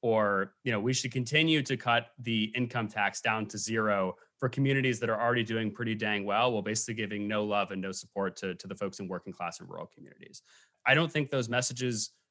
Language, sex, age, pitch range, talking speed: English, male, 30-49, 105-125 Hz, 225 wpm